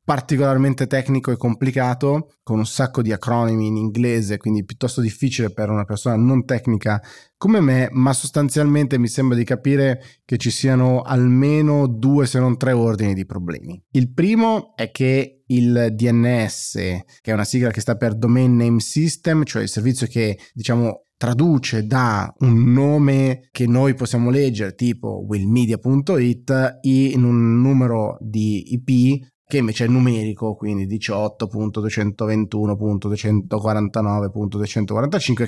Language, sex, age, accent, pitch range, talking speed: Italian, male, 20-39, native, 110-135 Hz, 135 wpm